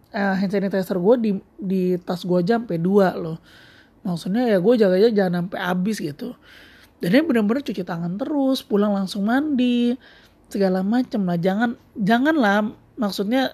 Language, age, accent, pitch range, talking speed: Indonesian, 20-39, native, 180-225 Hz, 150 wpm